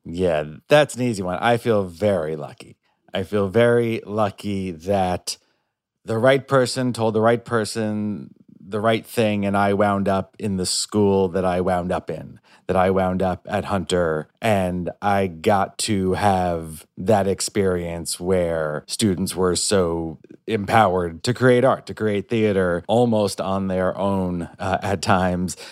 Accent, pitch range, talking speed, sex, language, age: American, 95-115 Hz, 155 wpm, male, English, 30-49